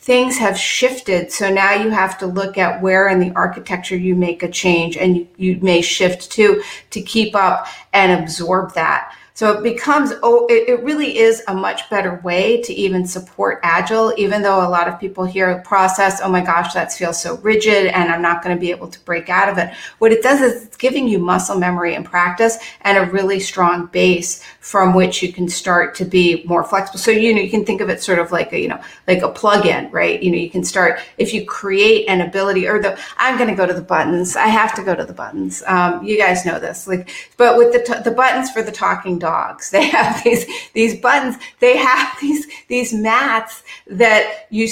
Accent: American